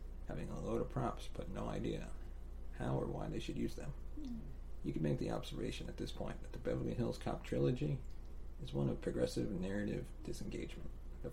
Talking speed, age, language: 190 wpm, 40-59, English